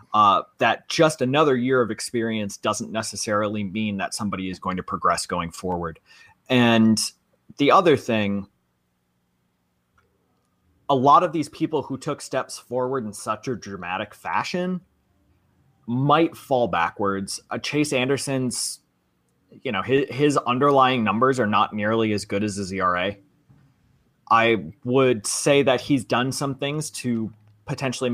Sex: male